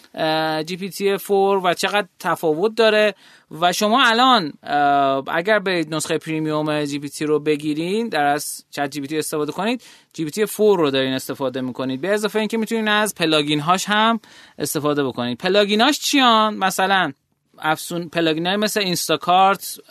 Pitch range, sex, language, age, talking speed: 145-195 Hz, male, Persian, 30-49, 150 wpm